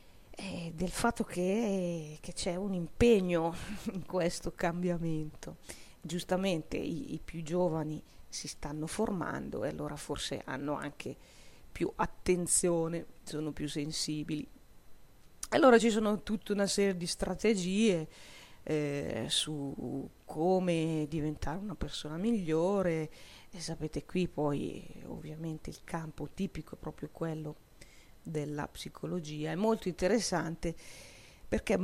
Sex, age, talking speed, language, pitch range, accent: female, 40-59, 115 wpm, Italian, 155-190 Hz, native